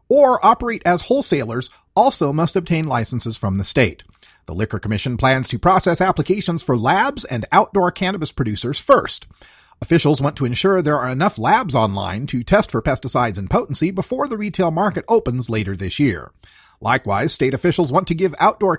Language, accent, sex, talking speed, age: English, American, male, 175 wpm, 40-59